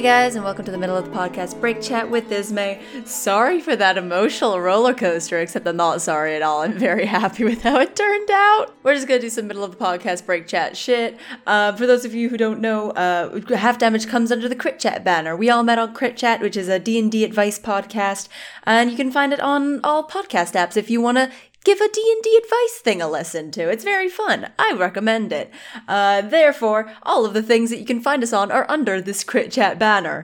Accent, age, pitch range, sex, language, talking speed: American, 20-39, 200-270 Hz, female, English, 240 wpm